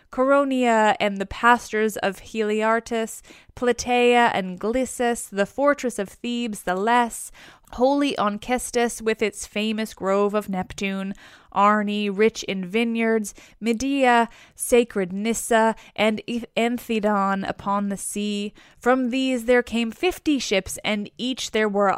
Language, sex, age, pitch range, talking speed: English, female, 20-39, 200-240 Hz, 125 wpm